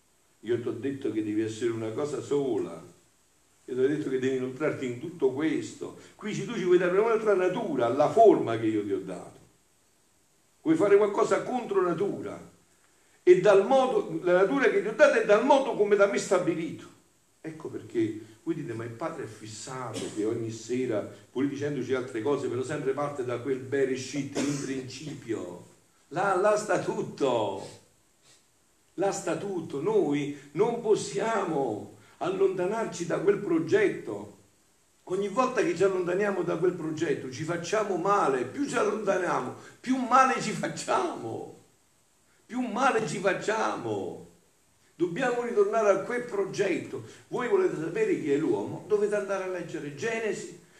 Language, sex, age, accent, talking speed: Italian, male, 50-69, native, 155 wpm